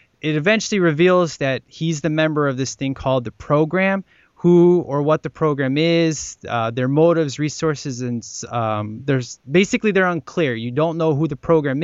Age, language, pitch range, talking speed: 20-39, English, 125-165 Hz, 175 wpm